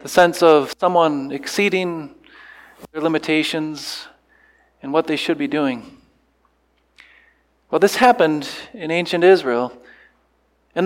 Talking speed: 110 wpm